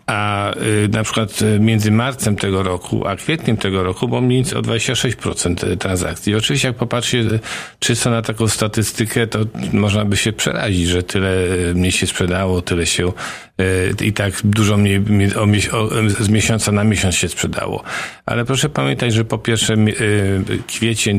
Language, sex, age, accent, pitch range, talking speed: Polish, male, 50-69, native, 95-110 Hz, 145 wpm